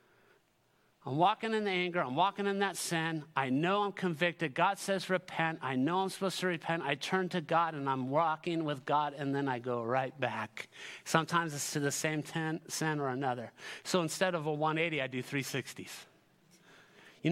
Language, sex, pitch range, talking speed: English, male, 130-175 Hz, 190 wpm